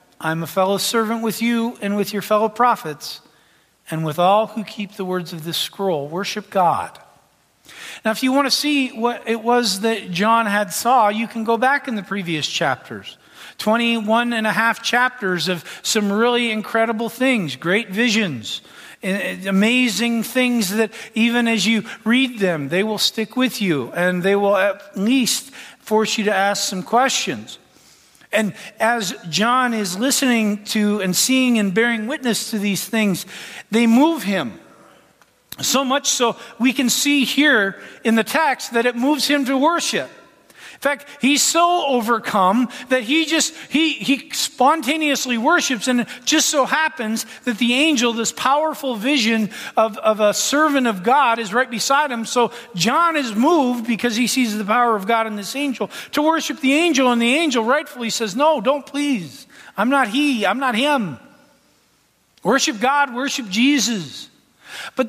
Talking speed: 170 wpm